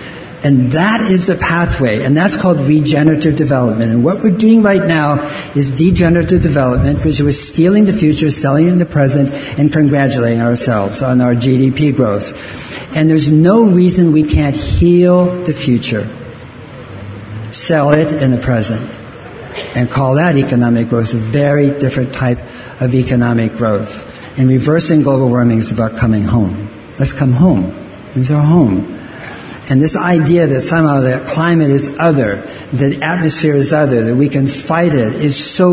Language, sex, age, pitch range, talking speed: English, male, 60-79, 125-165 Hz, 165 wpm